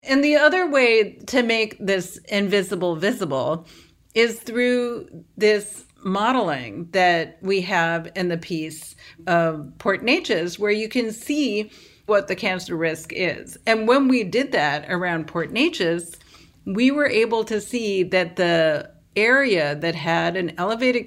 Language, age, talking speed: English, 40-59, 145 wpm